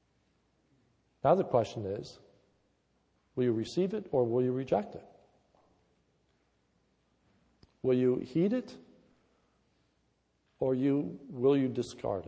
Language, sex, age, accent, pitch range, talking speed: English, male, 60-79, American, 110-145 Hz, 110 wpm